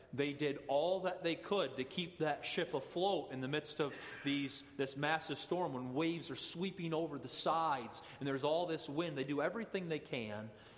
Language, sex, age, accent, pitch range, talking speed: English, male, 30-49, American, 125-160 Hz, 200 wpm